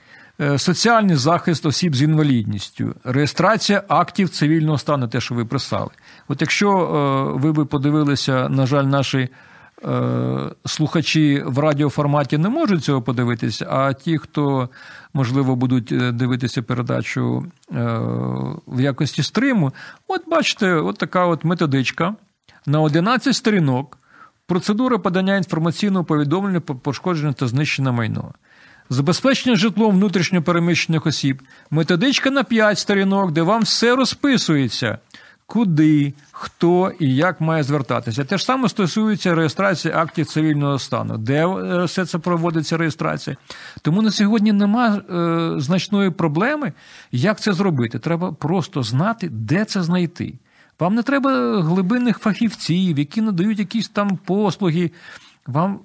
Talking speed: 120 wpm